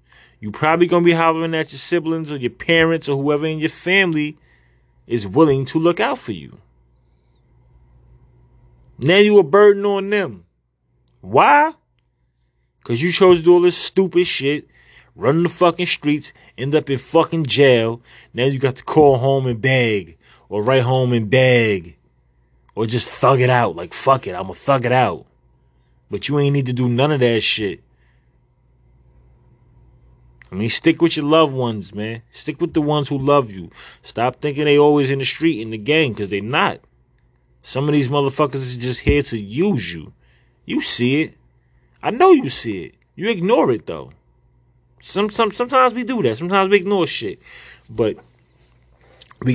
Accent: American